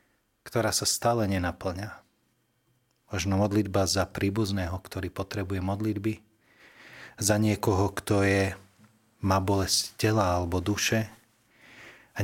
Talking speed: 105 wpm